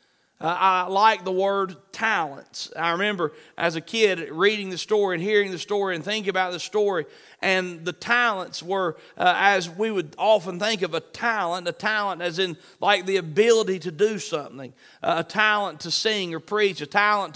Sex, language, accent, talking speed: male, English, American, 190 wpm